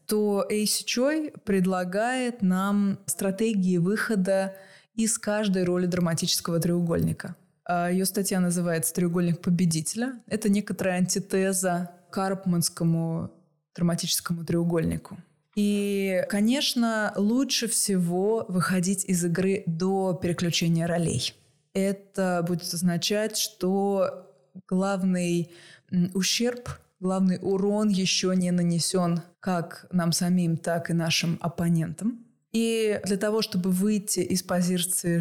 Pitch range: 175-205 Hz